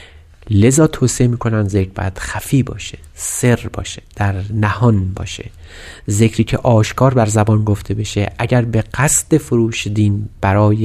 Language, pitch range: Persian, 100-125 Hz